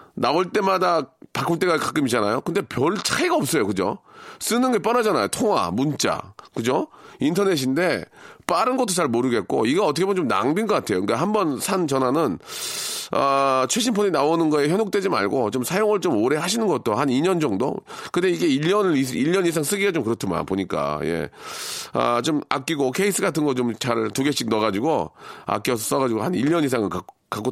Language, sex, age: Korean, male, 40-59